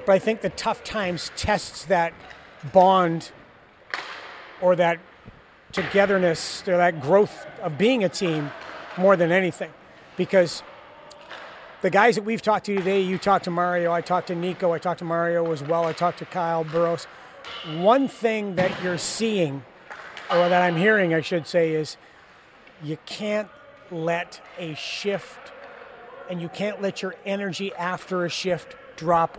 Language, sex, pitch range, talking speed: English, male, 175-220 Hz, 155 wpm